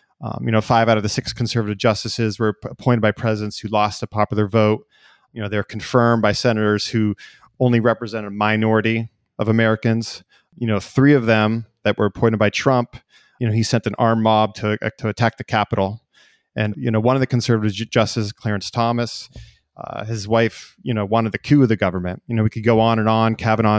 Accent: American